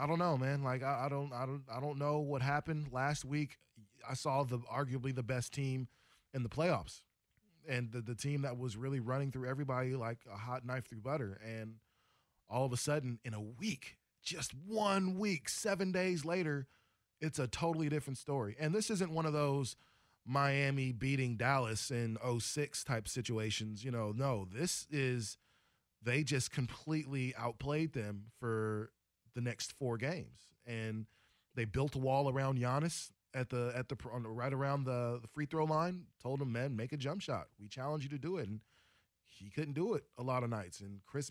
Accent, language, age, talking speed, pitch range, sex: American, English, 20-39, 195 wpm, 120-145 Hz, male